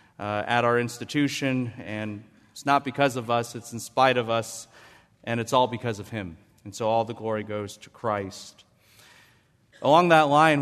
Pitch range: 105-145 Hz